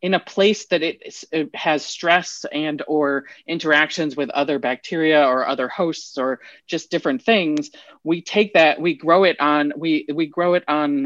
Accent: American